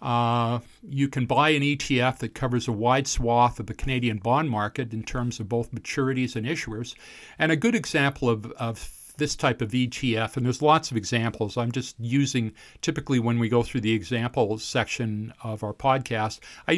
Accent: American